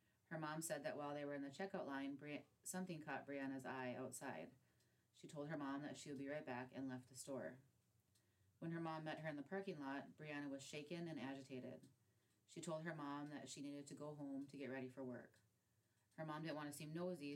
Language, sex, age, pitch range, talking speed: English, female, 30-49, 130-155 Hz, 230 wpm